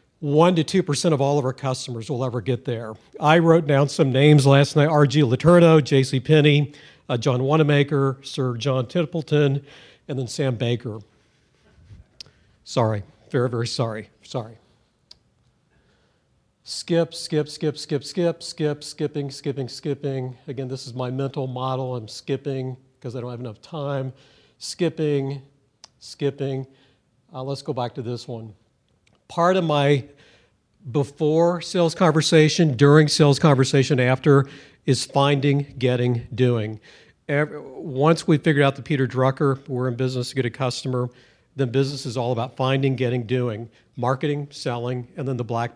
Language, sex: English, male